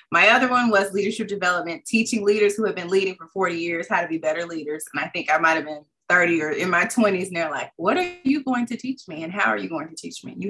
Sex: female